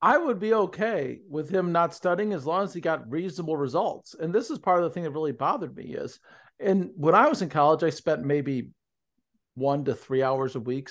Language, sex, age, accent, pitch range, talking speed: English, male, 40-59, American, 150-225 Hz, 230 wpm